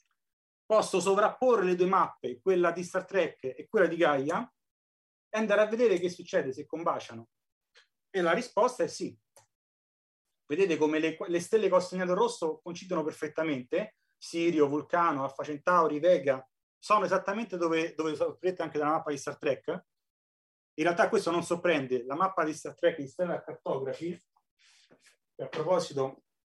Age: 30-49